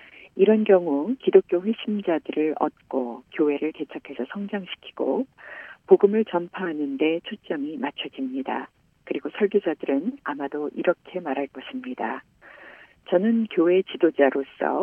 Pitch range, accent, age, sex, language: 150-225 Hz, native, 40-59, female, Korean